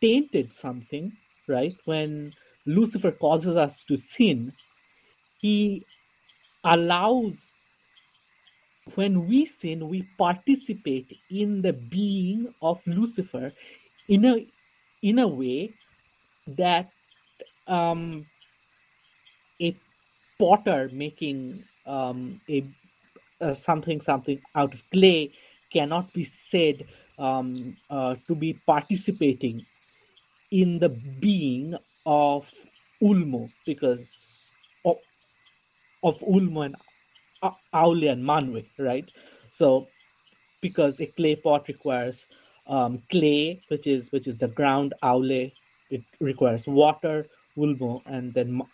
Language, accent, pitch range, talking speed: English, Indian, 135-185 Hz, 100 wpm